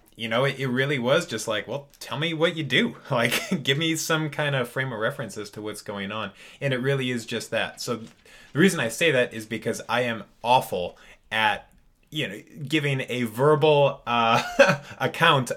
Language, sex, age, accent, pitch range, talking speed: English, male, 20-39, American, 105-140 Hz, 210 wpm